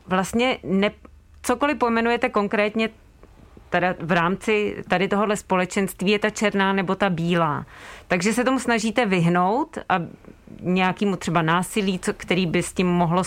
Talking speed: 130 wpm